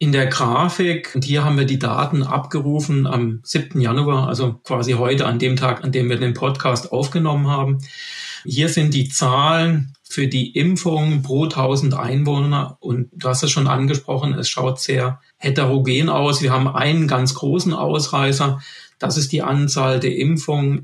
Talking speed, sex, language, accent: 165 wpm, male, German, German